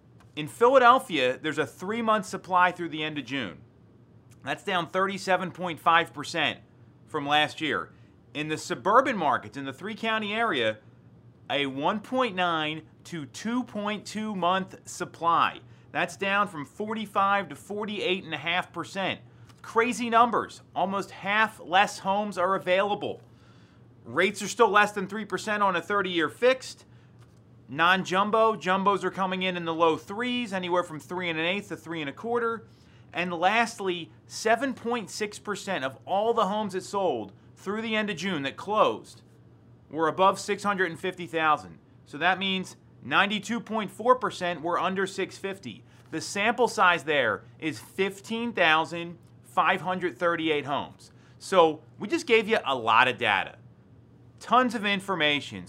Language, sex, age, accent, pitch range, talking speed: English, male, 30-49, American, 155-210 Hz, 125 wpm